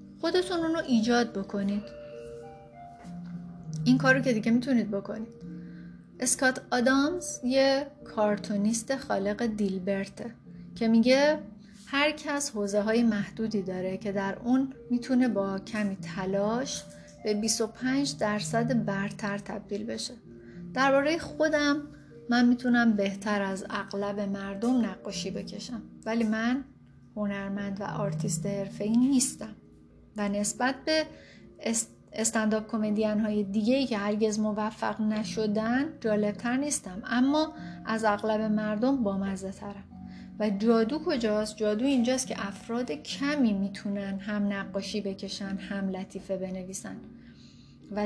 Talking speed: 115 wpm